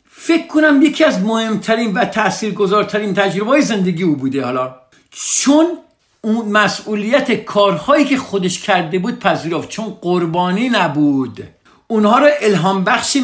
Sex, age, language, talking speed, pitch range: male, 50-69, Persian, 120 wpm, 130-195 Hz